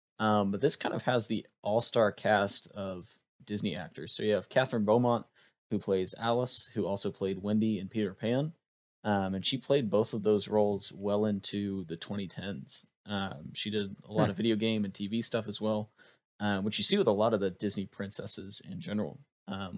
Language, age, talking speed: English, 20-39, 195 wpm